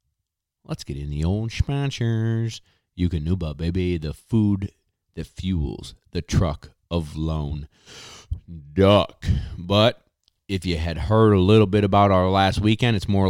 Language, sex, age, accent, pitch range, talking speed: English, male, 30-49, American, 85-105 Hz, 150 wpm